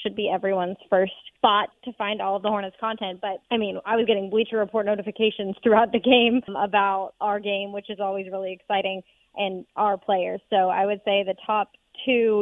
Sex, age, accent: female, 20-39, American